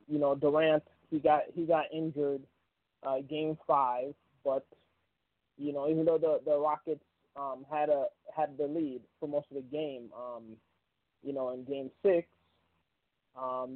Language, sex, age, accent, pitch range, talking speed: English, male, 20-39, American, 135-160 Hz, 160 wpm